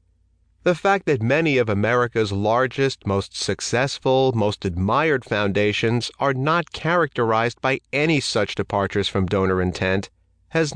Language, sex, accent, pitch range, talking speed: English, male, American, 95-130 Hz, 130 wpm